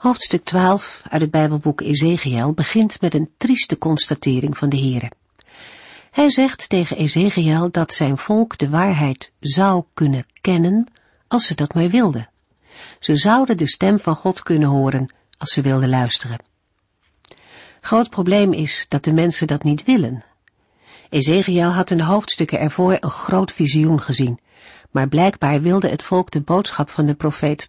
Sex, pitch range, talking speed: female, 140-190 Hz, 155 wpm